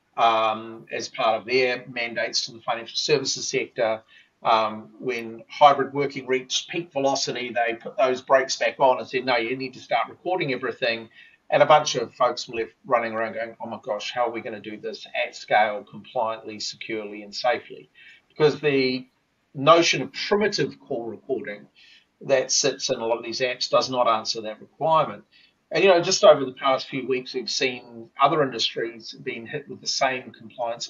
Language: English